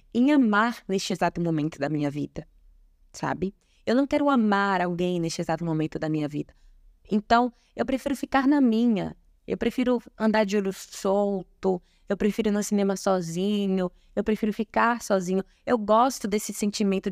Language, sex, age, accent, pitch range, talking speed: Portuguese, female, 20-39, Brazilian, 180-215 Hz, 160 wpm